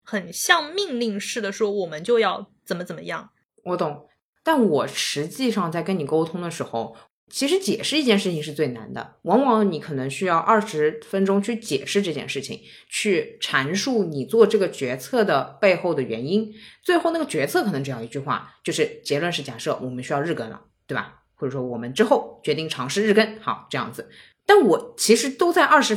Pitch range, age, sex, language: 180-265 Hz, 20-39, female, Chinese